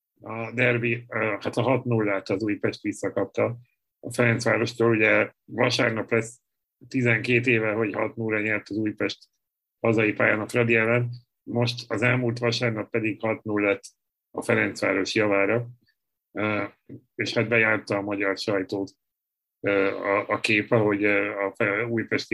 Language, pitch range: Hungarian, 105-120 Hz